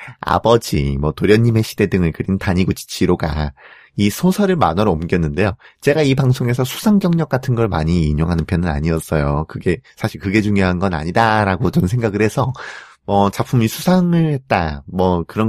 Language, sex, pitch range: Korean, male, 85-130 Hz